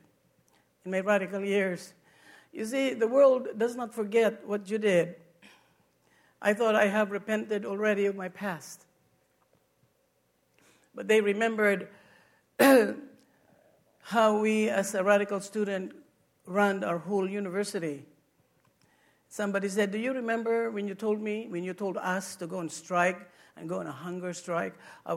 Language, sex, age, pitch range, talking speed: English, female, 60-79, 185-225 Hz, 145 wpm